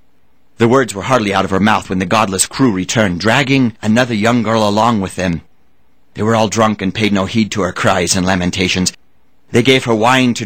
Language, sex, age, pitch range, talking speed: English, male, 40-59, 100-130 Hz, 220 wpm